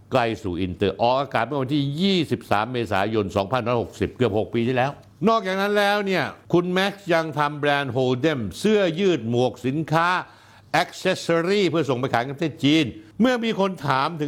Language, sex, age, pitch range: Thai, male, 60-79, 115-170 Hz